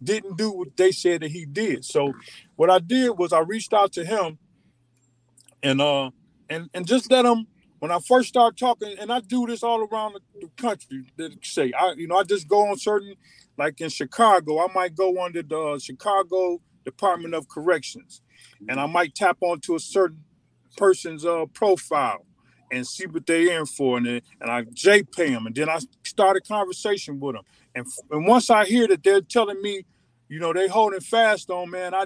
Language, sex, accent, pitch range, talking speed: English, male, American, 155-210 Hz, 200 wpm